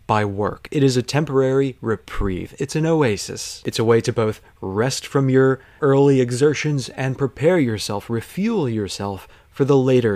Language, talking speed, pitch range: English, 165 wpm, 105-135 Hz